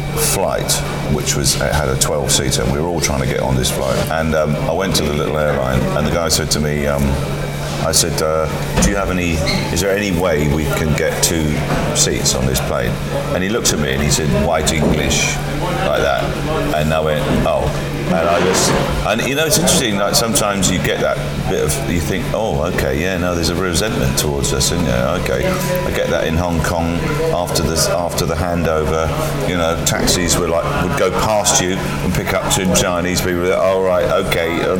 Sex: male